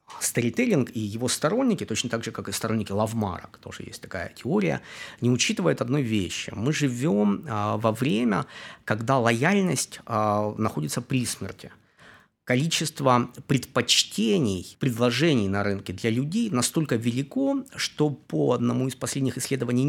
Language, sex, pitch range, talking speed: Ukrainian, male, 115-145 Hz, 130 wpm